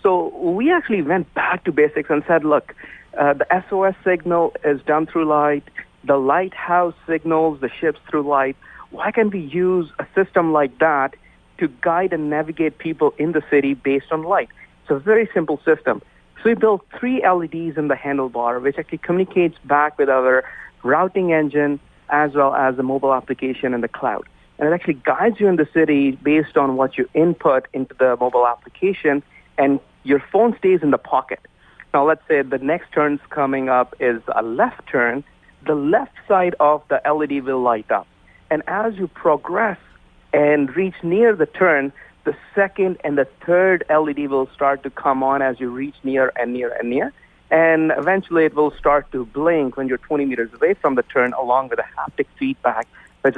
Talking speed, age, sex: 190 wpm, 50-69, male